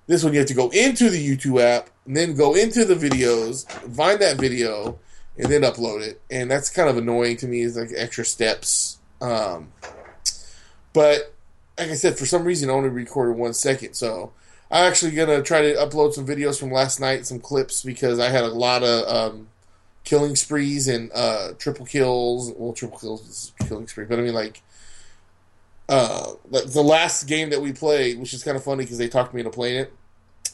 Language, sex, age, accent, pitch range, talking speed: English, male, 20-39, American, 115-140 Hz, 205 wpm